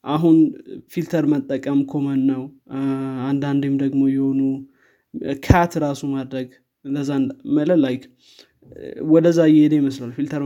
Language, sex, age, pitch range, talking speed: Amharic, male, 20-39, 130-150 Hz, 105 wpm